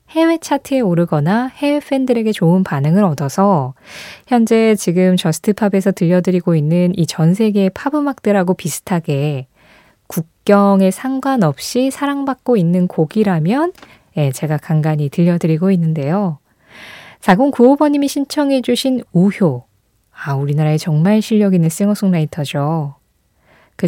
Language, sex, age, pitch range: Korean, female, 20-39, 165-245 Hz